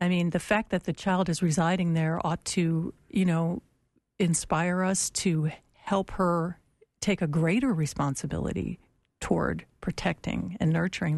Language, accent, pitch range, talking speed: English, American, 165-205 Hz, 145 wpm